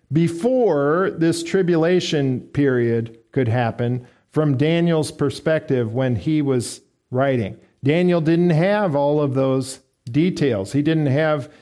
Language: English